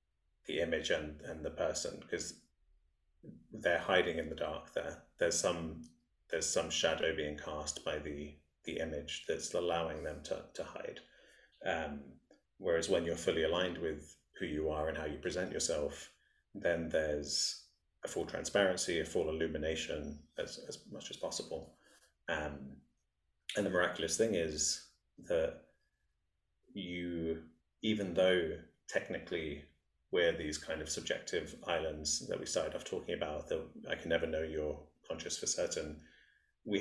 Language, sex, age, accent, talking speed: English, male, 30-49, British, 150 wpm